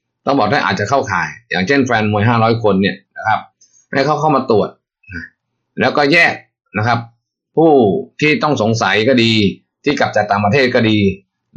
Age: 20-39